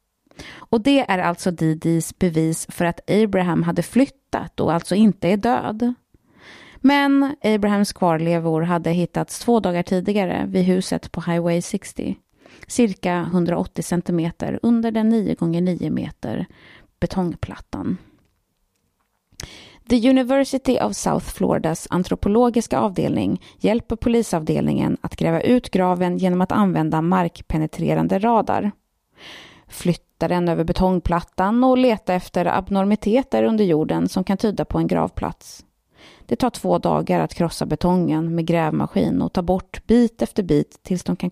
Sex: female